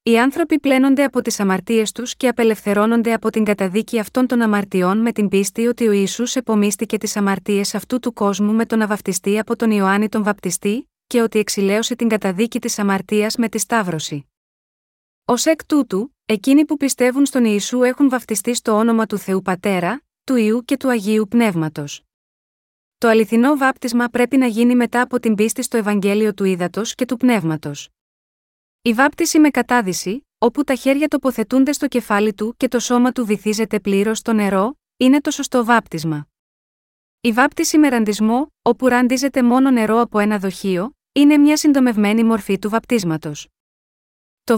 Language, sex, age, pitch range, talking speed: Greek, female, 20-39, 205-250 Hz, 165 wpm